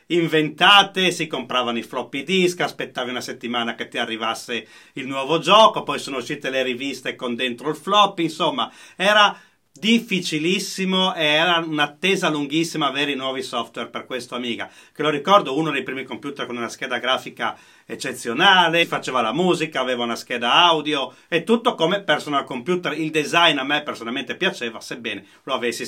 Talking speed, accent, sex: 165 wpm, native, male